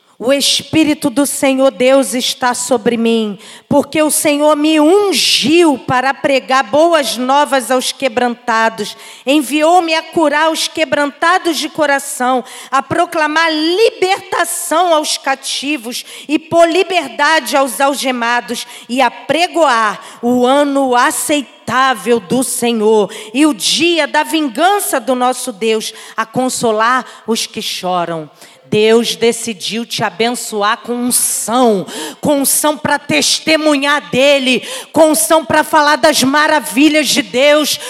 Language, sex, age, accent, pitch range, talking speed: Portuguese, female, 40-59, Brazilian, 240-315 Hz, 125 wpm